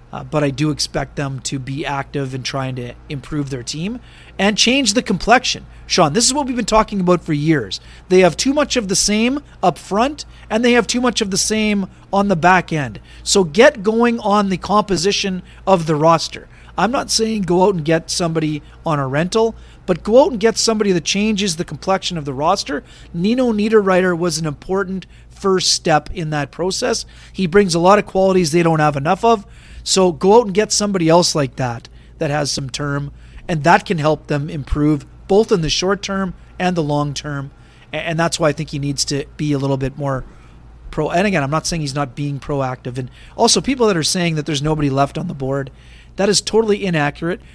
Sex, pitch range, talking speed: male, 150-215 Hz, 215 wpm